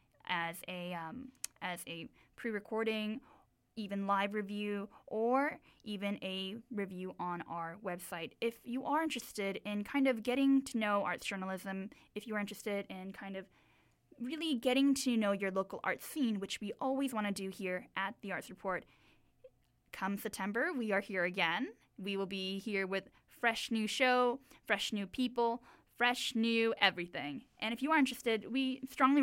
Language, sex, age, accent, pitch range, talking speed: English, female, 10-29, American, 195-240 Hz, 165 wpm